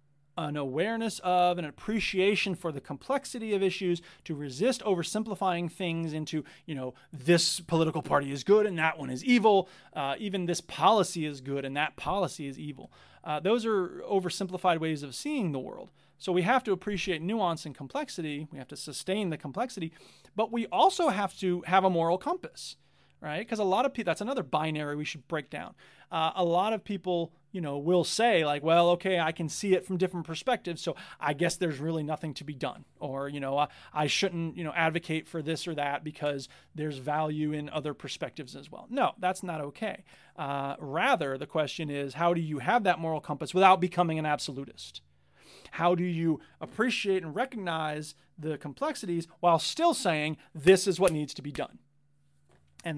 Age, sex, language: 30-49, male, English